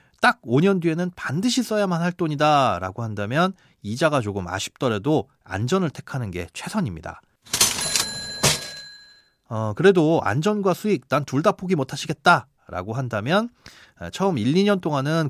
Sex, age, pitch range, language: male, 30-49, 115-170 Hz, Korean